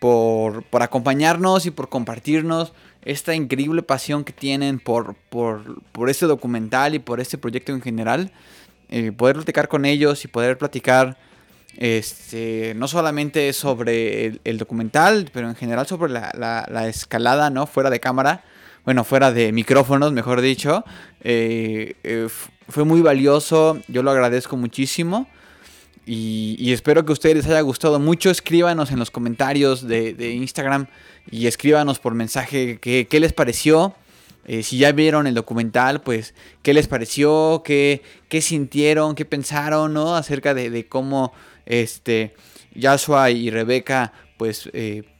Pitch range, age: 120-150 Hz, 20-39